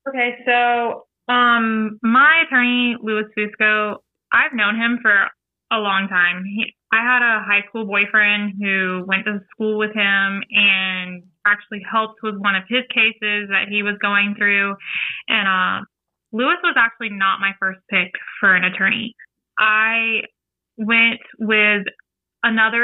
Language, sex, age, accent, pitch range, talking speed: English, female, 20-39, American, 200-235 Hz, 145 wpm